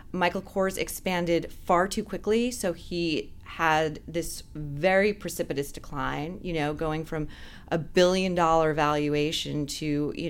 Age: 30-49